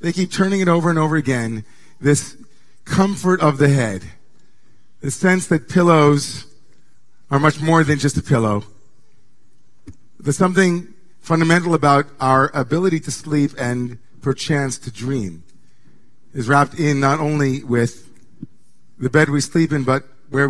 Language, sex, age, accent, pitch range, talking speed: English, male, 40-59, American, 125-155 Hz, 145 wpm